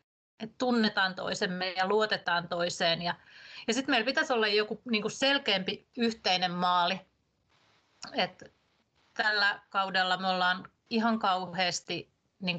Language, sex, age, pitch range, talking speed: Finnish, female, 30-49, 190-230 Hz, 120 wpm